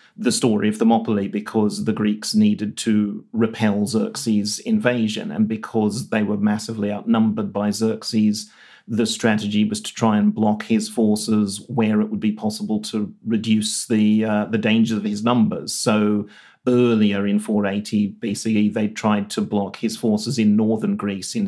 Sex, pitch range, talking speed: male, 105-150 Hz, 160 wpm